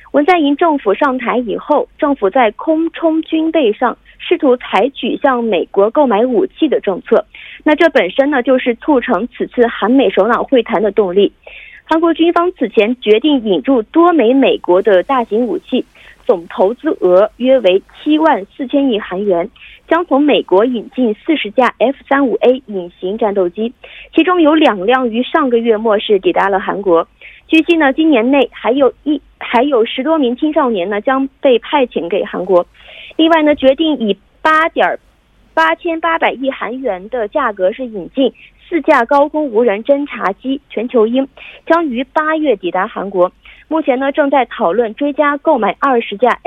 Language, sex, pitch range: Korean, female, 225-315 Hz